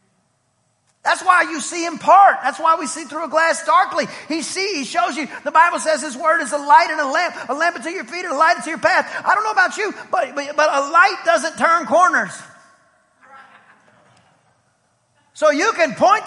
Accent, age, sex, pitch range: American, 40-59, male, 315-380 Hz